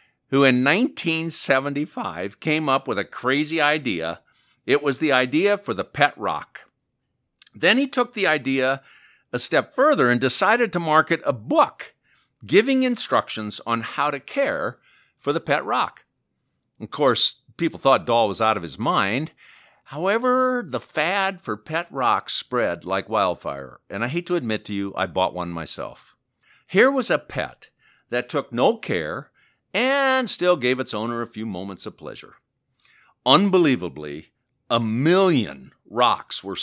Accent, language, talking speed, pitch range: American, English, 155 wpm, 110-170 Hz